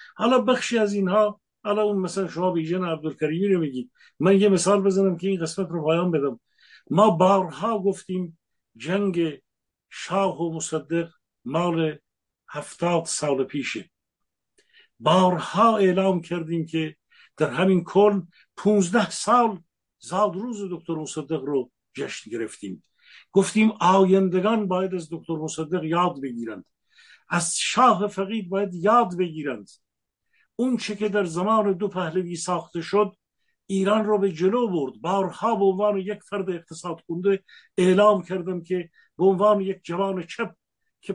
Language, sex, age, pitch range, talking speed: English, male, 60-79, 170-205 Hz, 135 wpm